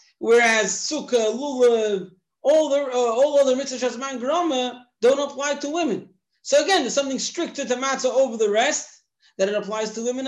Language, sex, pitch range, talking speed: English, male, 235-295 Hz, 175 wpm